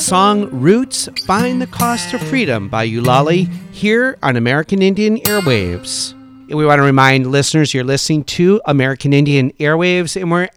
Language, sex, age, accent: English, male, 50-69, American